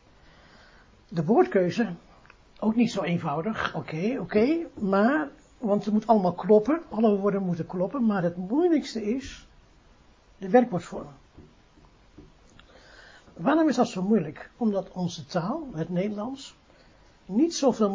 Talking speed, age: 120 wpm, 60-79